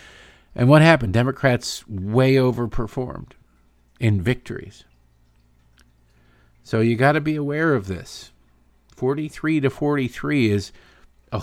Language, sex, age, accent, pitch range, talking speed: English, male, 50-69, American, 80-130 Hz, 105 wpm